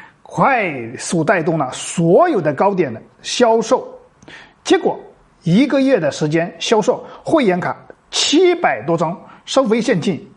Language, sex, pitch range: Chinese, male, 200-280 Hz